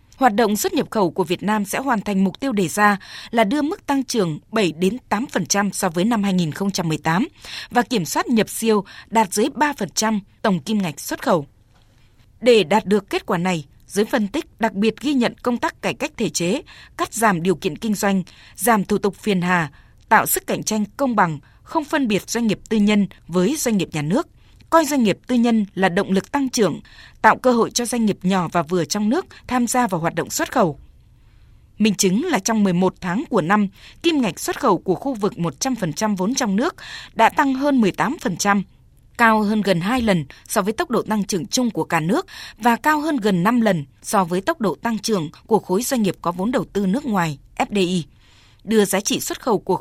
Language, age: Vietnamese, 20-39